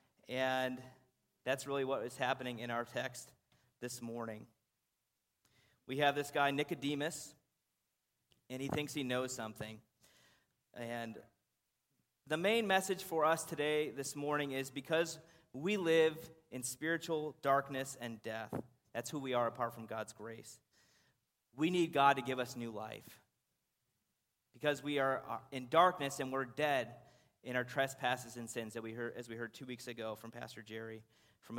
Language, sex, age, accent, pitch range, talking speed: English, male, 30-49, American, 120-150 Hz, 155 wpm